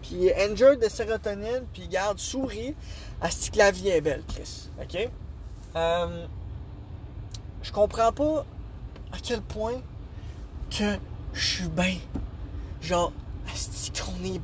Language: English